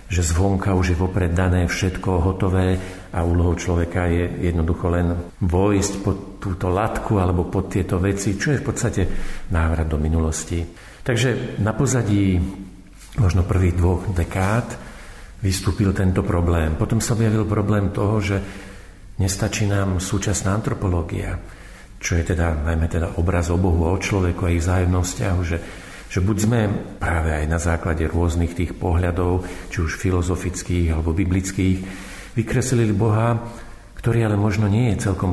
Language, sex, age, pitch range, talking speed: Slovak, male, 50-69, 90-100 Hz, 145 wpm